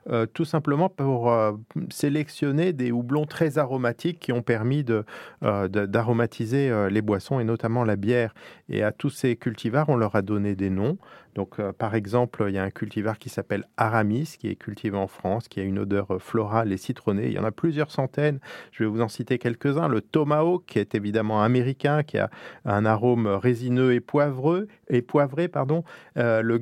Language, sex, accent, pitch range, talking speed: French, male, French, 110-140 Hz, 195 wpm